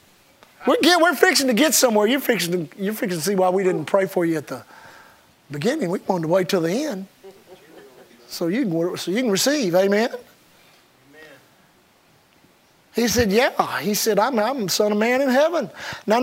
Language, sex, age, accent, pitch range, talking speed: English, male, 50-69, American, 210-330 Hz, 170 wpm